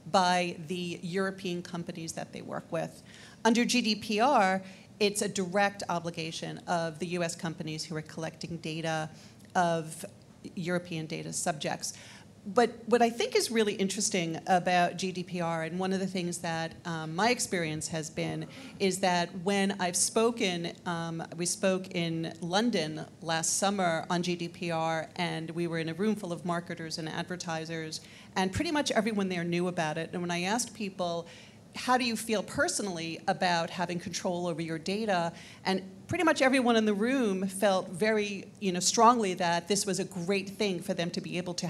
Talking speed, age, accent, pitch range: 170 wpm, 40-59, American, 170-210 Hz